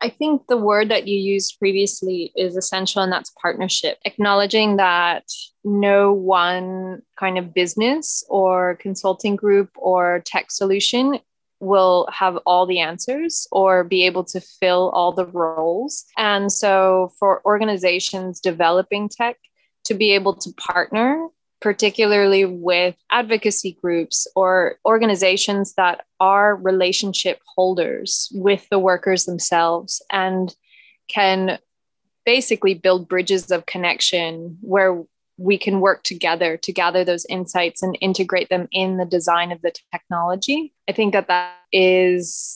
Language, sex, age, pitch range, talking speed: English, female, 20-39, 180-200 Hz, 135 wpm